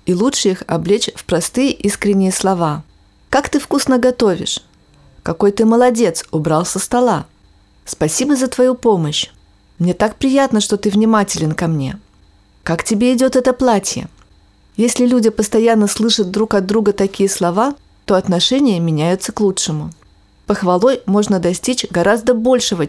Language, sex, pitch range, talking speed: Russian, female, 175-230 Hz, 140 wpm